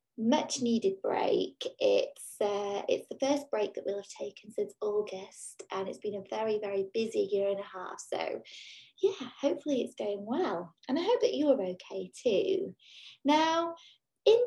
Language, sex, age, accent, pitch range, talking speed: English, female, 20-39, British, 190-265 Hz, 170 wpm